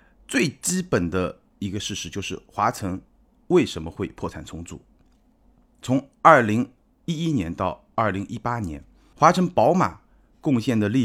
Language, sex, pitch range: Chinese, male, 90-120 Hz